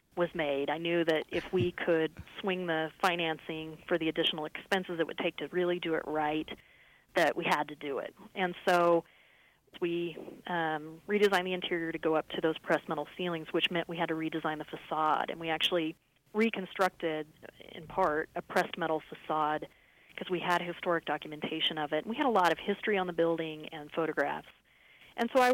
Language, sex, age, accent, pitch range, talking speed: English, female, 30-49, American, 155-185 Hz, 195 wpm